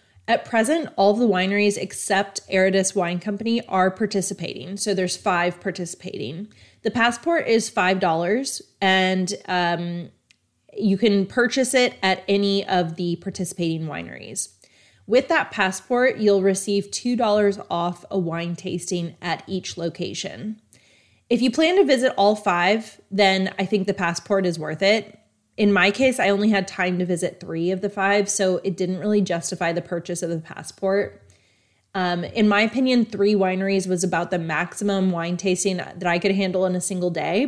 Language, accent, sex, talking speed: English, American, female, 165 wpm